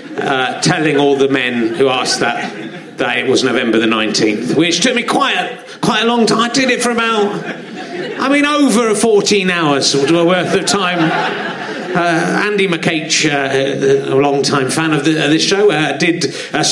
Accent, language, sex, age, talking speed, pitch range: British, English, male, 30-49, 175 wpm, 155-205 Hz